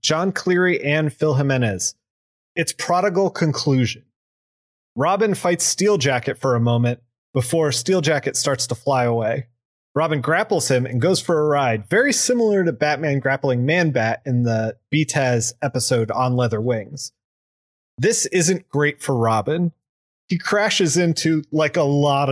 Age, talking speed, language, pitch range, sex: 30-49, 150 wpm, English, 125-160 Hz, male